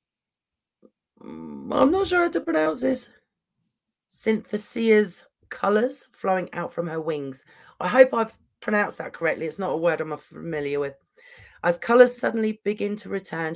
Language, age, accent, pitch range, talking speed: English, 40-59, British, 155-205 Hz, 145 wpm